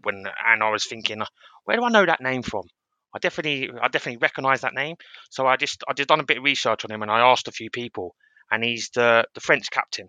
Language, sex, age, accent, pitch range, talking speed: English, male, 20-39, British, 105-125 Hz, 255 wpm